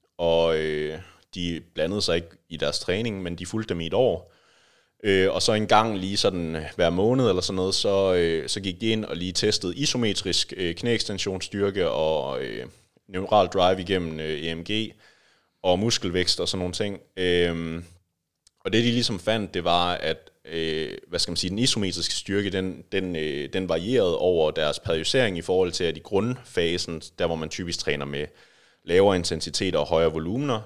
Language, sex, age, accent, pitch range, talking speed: English, male, 30-49, Danish, 85-105 Hz, 185 wpm